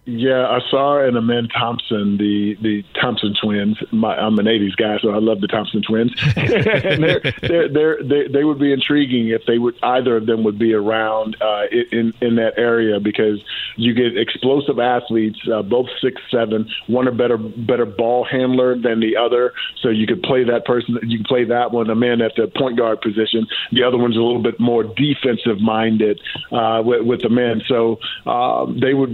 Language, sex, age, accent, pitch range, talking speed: English, male, 40-59, American, 110-125 Hz, 190 wpm